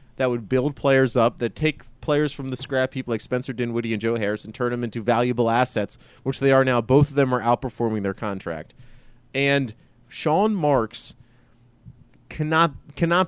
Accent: American